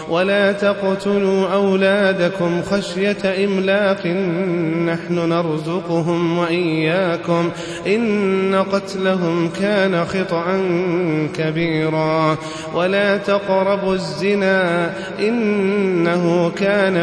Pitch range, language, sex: 170-195 Hz, Arabic, male